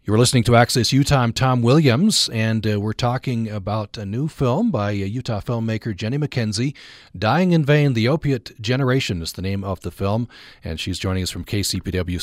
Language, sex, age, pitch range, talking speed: English, male, 40-59, 100-120 Hz, 190 wpm